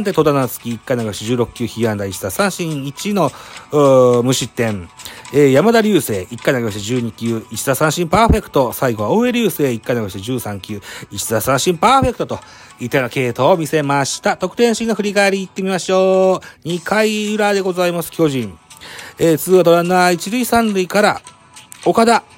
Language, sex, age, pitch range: Japanese, male, 40-59, 125-190 Hz